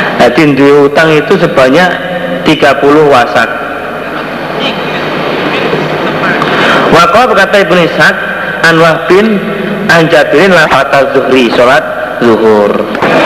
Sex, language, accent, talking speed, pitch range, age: male, Indonesian, native, 85 wpm, 140-165 Hz, 50-69